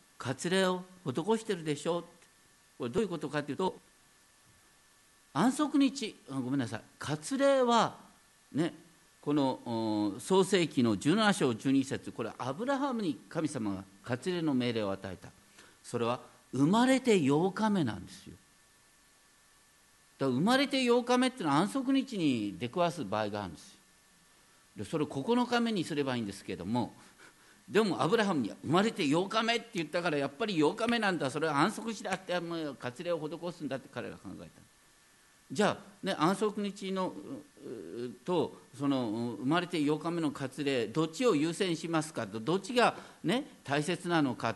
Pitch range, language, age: 130-205 Hz, Japanese, 50-69